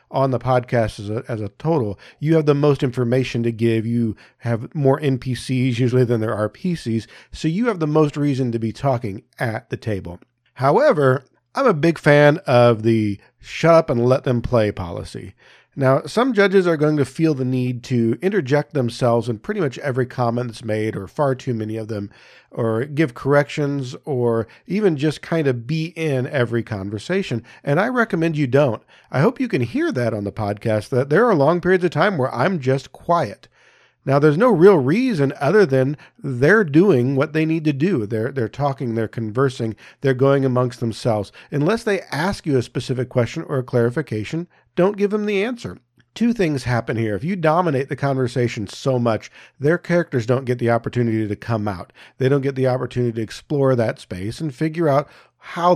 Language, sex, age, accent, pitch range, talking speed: English, male, 40-59, American, 115-155 Hz, 195 wpm